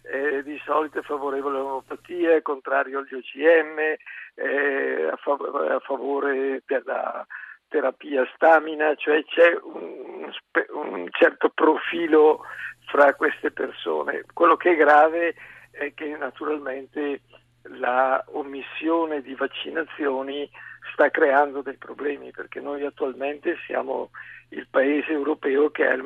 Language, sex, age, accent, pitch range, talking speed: Italian, male, 50-69, native, 140-165 Hz, 115 wpm